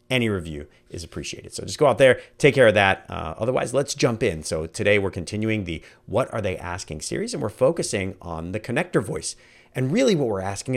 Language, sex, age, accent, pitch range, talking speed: English, male, 40-59, American, 90-130 Hz, 225 wpm